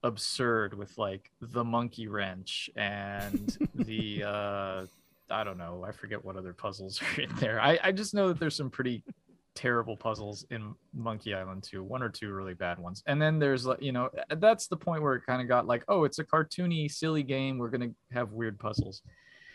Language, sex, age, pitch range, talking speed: English, male, 20-39, 105-135 Hz, 205 wpm